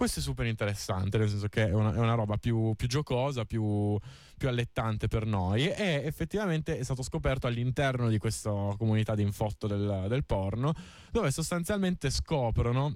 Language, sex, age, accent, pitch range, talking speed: Italian, male, 20-39, native, 110-150 Hz, 170 wpm